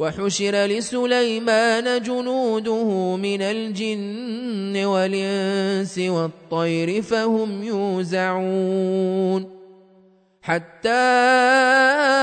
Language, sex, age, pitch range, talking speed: Arabic, male, 30-49, 190-225 Hz, 50 wpm